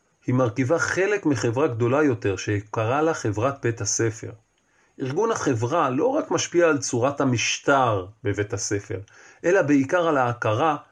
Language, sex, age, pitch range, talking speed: Hebrew, male, 40-59, 110-145 Hz, 135 wpm